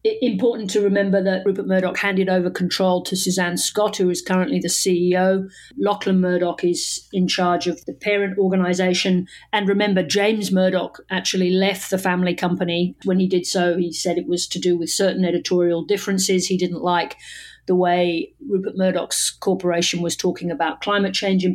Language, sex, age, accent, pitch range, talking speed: English, female, 50-69, British, 175-195 Hz, 175 wpm